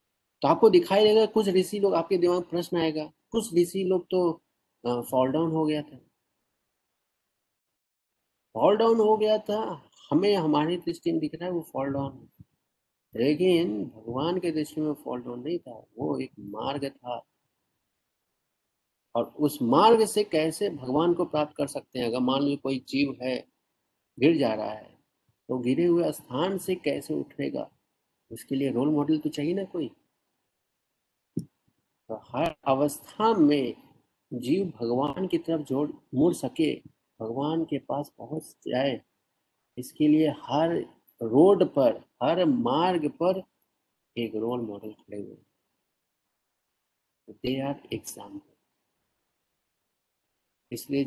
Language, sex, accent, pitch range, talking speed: Hindi, male, native, 130-175 Hz, 135 wpm